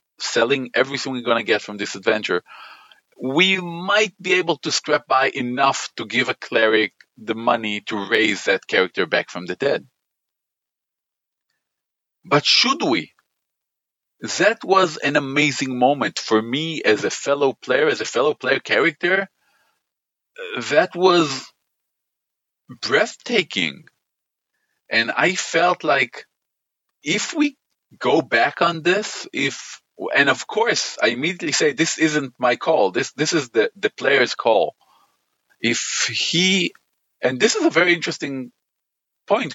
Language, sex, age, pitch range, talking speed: English, male, 40-59, 135-185 Hz, 135 wpm